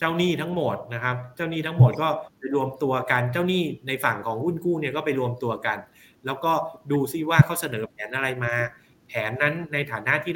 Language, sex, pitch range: Thai, male, 120-160 Hz